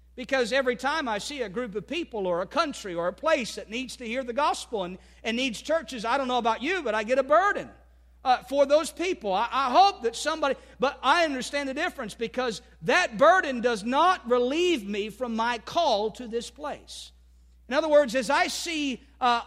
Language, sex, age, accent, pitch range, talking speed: English, male, 50-69, American, 225-305 Hz, 215 wpm